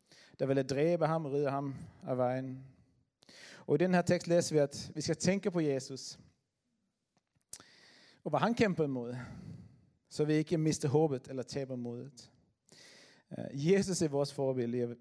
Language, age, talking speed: Danish, 30-49, 160 wpm